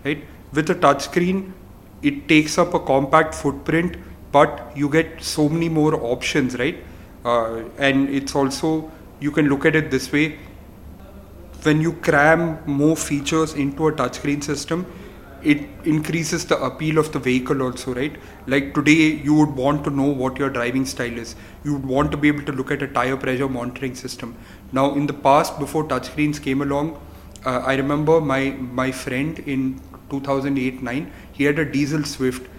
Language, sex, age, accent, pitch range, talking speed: English, male, 30-49, Indian, 130-155 Hz, 170 wpm